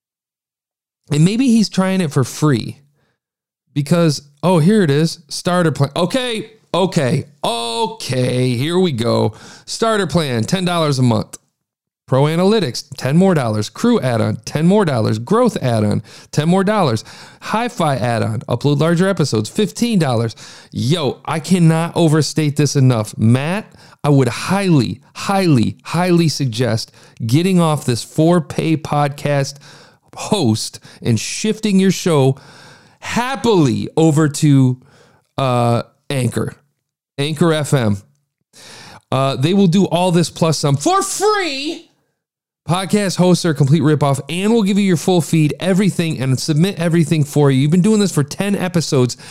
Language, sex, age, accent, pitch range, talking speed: English, male, 40-59, American, 130-180 Hz, 135 wpm